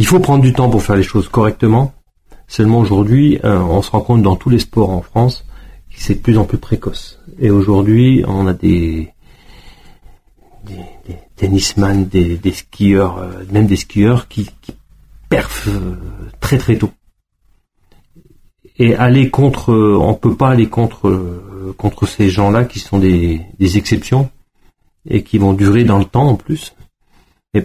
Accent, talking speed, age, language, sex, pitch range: French, 175 wpm, 40-59, French, male, 95-115 Hz